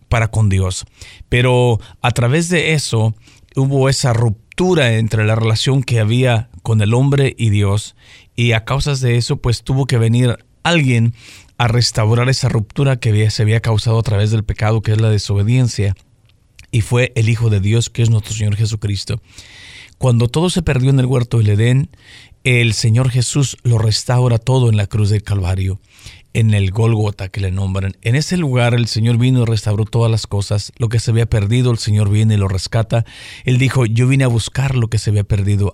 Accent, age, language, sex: Mexican, 50-69, Spanish, male